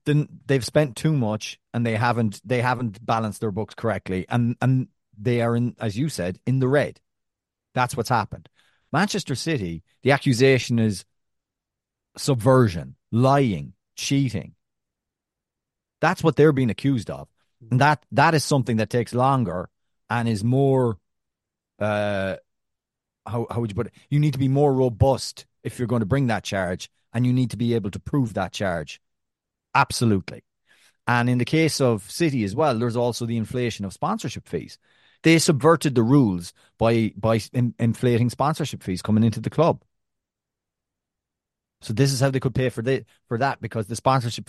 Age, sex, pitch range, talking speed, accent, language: 30-49, male, 105-135 Hz, 170 wpm, Irish, English